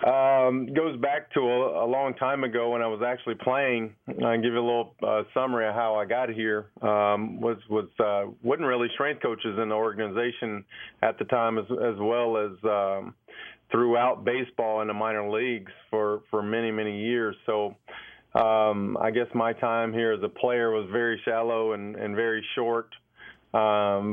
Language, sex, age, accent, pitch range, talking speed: English, male, 40-59, American, 105-115 Hz, 180 wpm